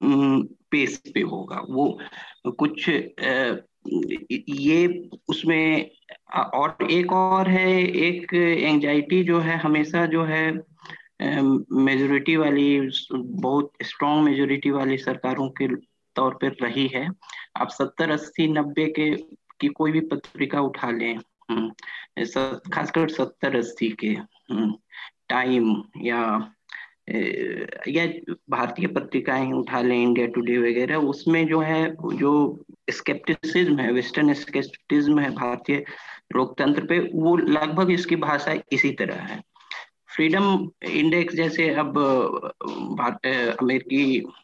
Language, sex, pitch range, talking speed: Hindi, male, 130-165 Hz, 100 wpm